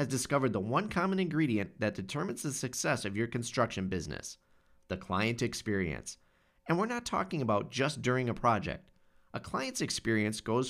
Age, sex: 30-49, male